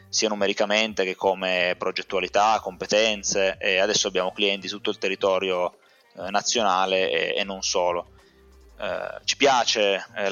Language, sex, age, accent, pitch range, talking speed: Italian, male, 20-39, native, 95-110 Hz, 140 wpm